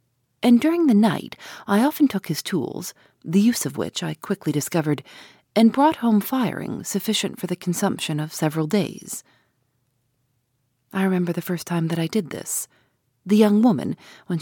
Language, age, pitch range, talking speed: English, 40-59, 145-210 Hz, 165 wpm